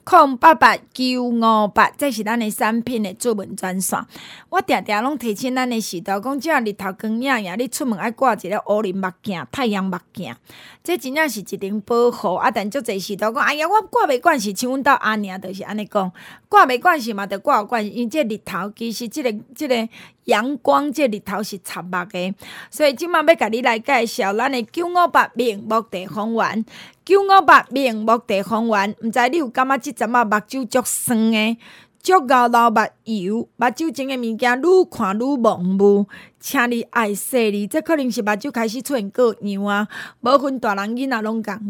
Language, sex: Chinese, female